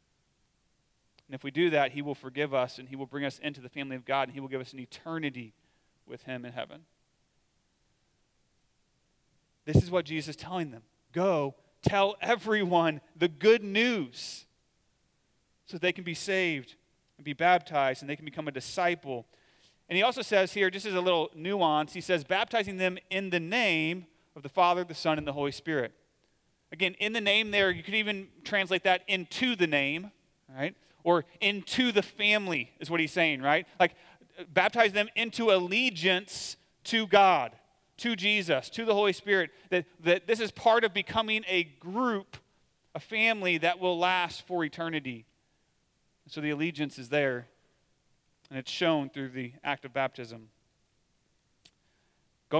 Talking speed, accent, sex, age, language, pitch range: 170 wpm, American, male, 30-49, English, 145-190 Hz